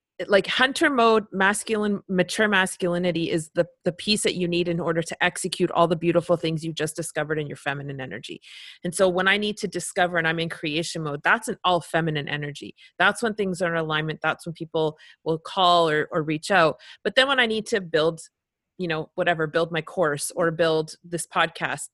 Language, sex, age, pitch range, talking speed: English, female, 30-49, 160-200 Hz, 210 wpm